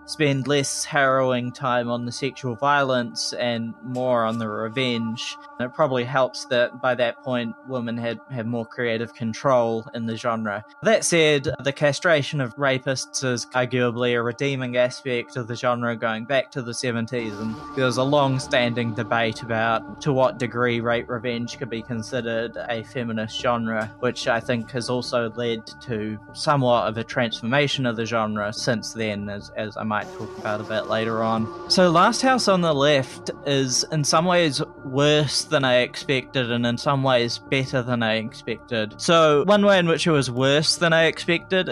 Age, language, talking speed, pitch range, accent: 20-39, English, 175 wpm, 120-140 Hz, Australian